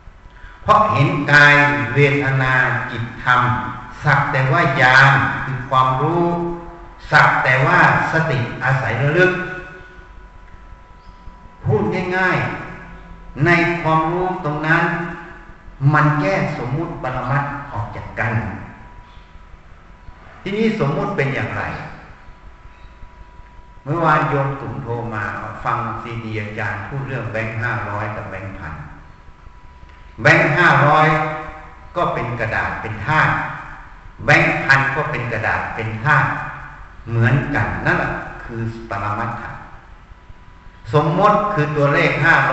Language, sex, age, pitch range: Thai, male, 60-79, 105-150 Hz